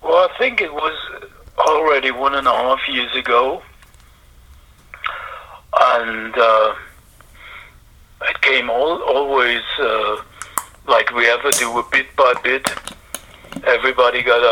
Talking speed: 120 wpm